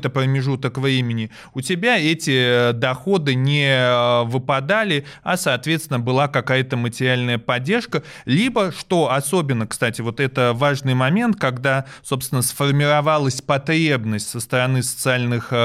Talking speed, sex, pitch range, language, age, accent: 110 wpm, male, 125-160 Hz, Russian, 20-39, native